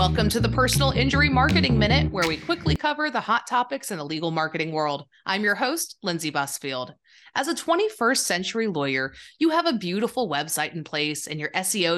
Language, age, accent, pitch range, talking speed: English, 30-49, American, 155-245 Hz, 195 wpm